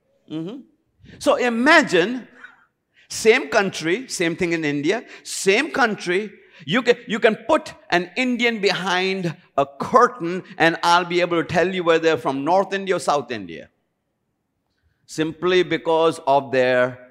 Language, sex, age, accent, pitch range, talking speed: English, male, 50-69, Indian, 165-250 Hz, 140 wpm